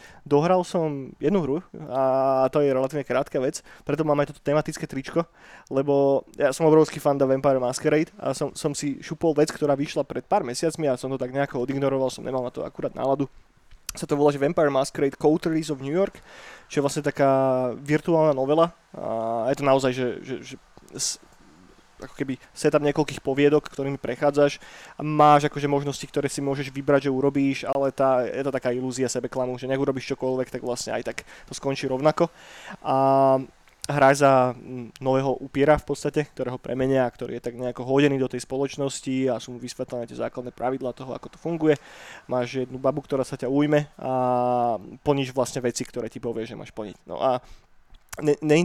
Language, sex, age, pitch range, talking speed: Slovak, male, 20-39, 130-150 Hz, 190 wpm